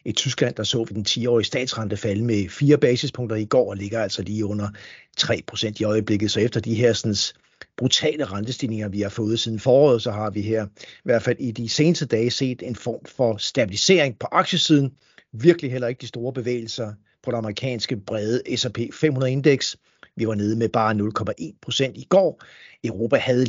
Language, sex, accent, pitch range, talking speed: Danish, male, native, 110-130 Hz, 195 wpm